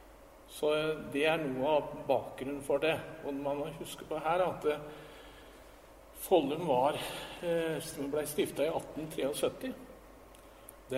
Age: 60-79